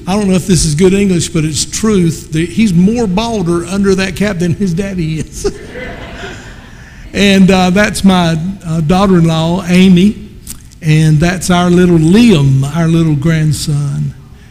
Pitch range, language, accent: 155-190 Hz, English, American